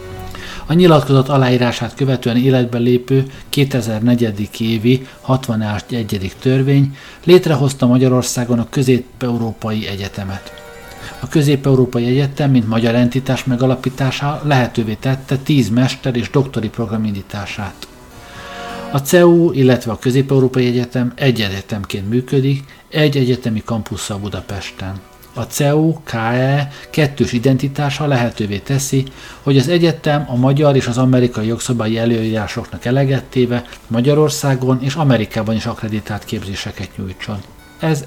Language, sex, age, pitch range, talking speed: Hungarian, male, 50-69, 110-135 Hz, 105 wpm